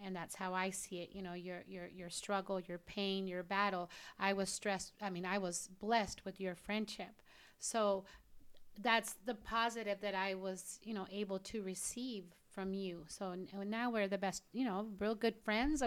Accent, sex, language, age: American, female, English, 30-49